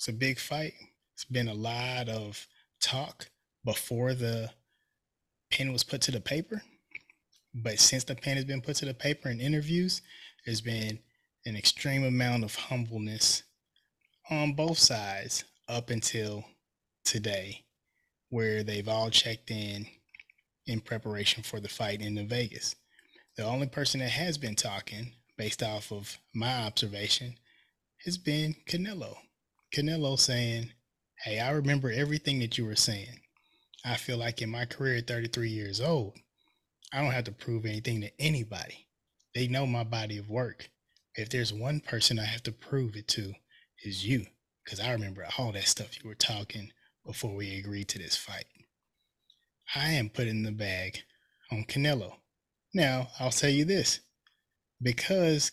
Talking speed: 155 wpm